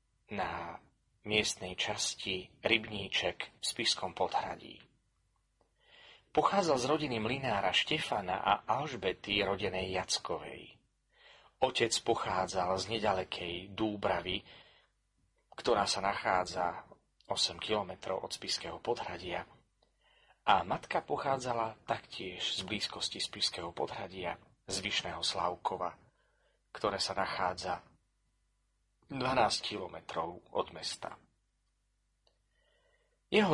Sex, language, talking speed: male, Slovak, 85 wpm